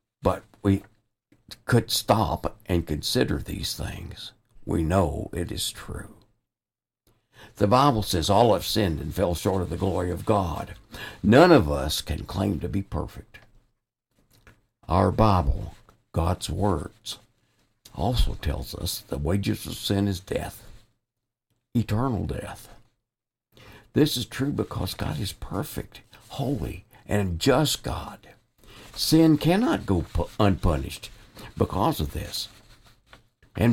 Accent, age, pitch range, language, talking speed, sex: American, 60-79, 90-115 Hz, English, 120 wpm, male